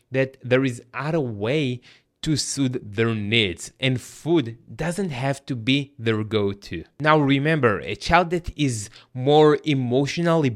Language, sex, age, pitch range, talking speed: English, male, 20-39, 120-155 Hz, 140 wpm